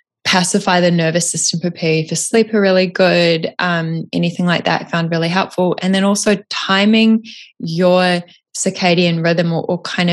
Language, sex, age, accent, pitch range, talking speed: English, female, 20-39, Australian, 165-195 Hz, 160 wpm